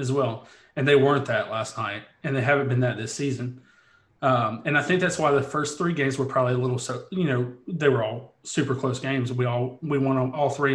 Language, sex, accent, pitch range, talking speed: English, male, American, 120-135 Hz, 245 wpm